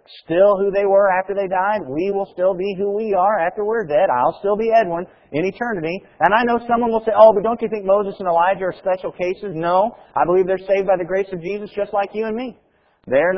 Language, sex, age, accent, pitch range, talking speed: English, male, 40-59, American, 145-205 Hz, 250 wpm